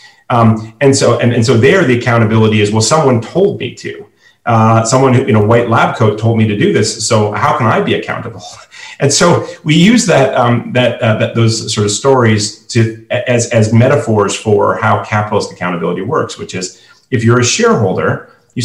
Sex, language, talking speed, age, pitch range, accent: male, English, 205 wpm, 40-59, 110-135 Hz, American